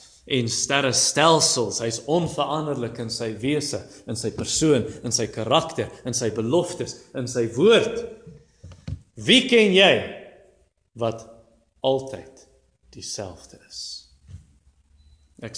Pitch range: 110-145 Hz